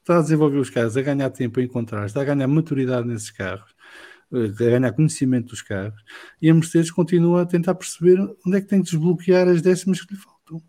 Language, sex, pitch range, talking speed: English, male, 105-155 Hz, 220 wpm